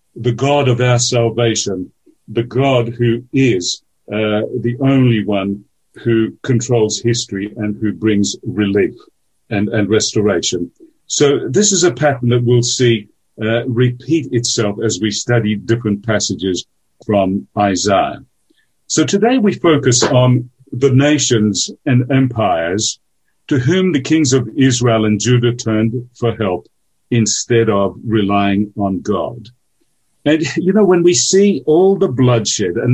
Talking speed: 140 wpm